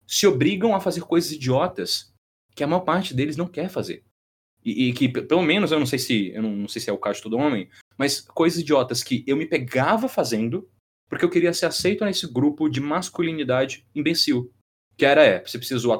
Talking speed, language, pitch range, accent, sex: 220 wpm, Portuguese, 115-170 Hz, Brazilian, male